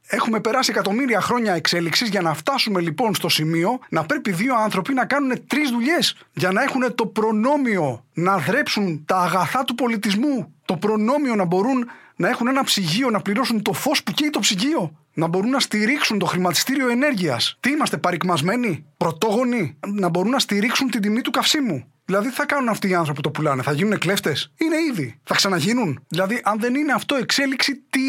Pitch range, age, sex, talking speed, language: 170-245 Hz, 20-39, male, 190 wpm, English